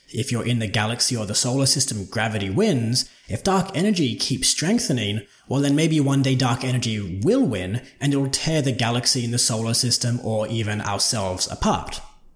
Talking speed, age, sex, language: 185 wpm, 20-39, male, English